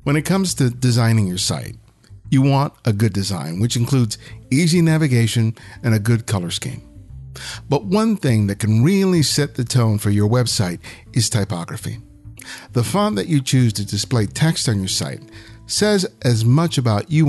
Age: 50-69